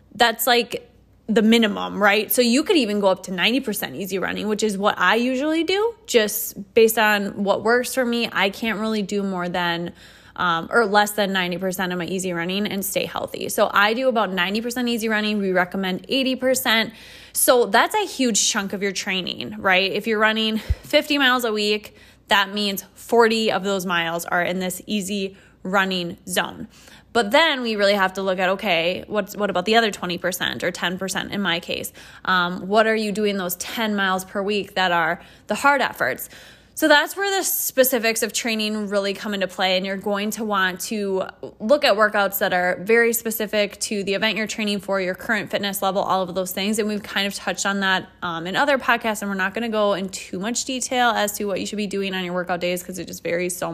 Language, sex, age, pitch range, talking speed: English, female, 20-39, 190-225 Hz, 215 wpm